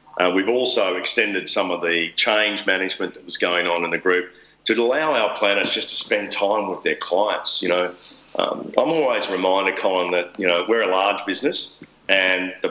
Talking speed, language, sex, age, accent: 205 wpm, English, male, 50-69, Australian